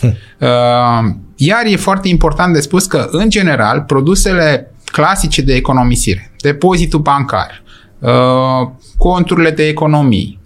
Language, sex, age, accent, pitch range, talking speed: Romanian, male, 30-49, native, 120-170 Hz, 105 wpm